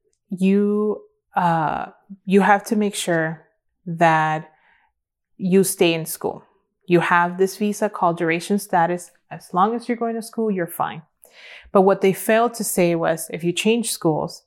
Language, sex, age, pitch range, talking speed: English, female, 20-39, 170-205 Hz, 160 wpm